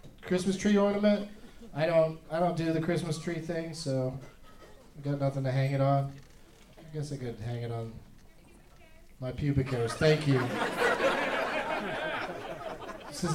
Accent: American